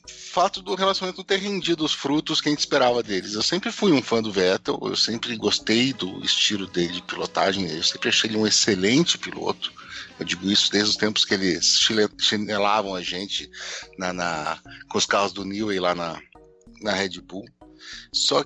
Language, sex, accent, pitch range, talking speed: Portuguese, male, Brazilian, 100-140 Hz, 190 wpm